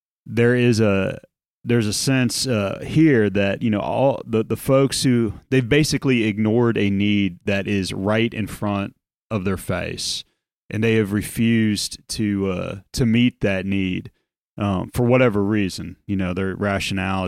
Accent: American